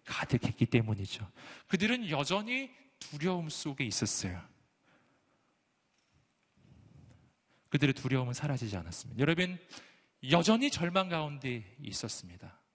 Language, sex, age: Korean, male, 40-59